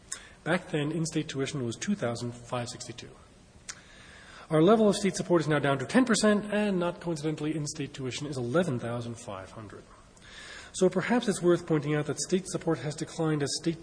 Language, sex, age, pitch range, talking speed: English, male, 30-49, 125-165 Hz, 155 wpm